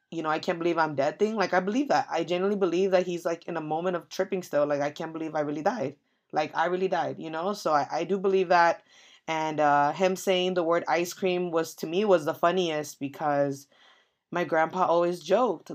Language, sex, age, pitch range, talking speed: English, female, 20-39, 160-195 Hz, 235 wpm